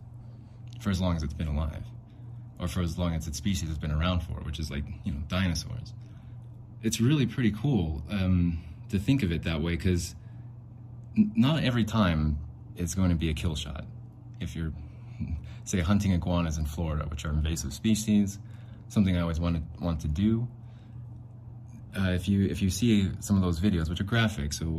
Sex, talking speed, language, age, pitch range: male, 195 wpm, English, 20-39, 90-120 Hz